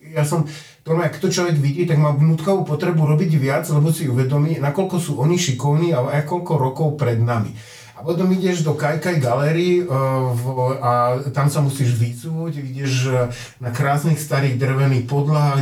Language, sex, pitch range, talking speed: Slovak, male, 120-150 Hz, 175 wpm